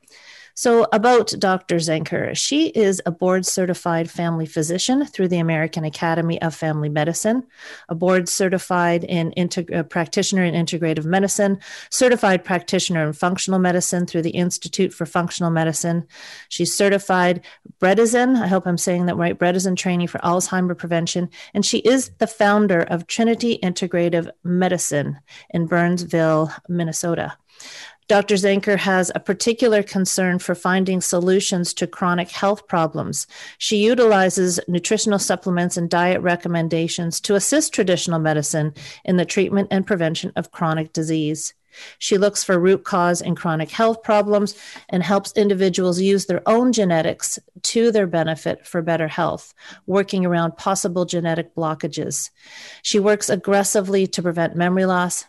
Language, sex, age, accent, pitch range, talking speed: English, female, 40-59, American, 165-200 Hz, 135 wpm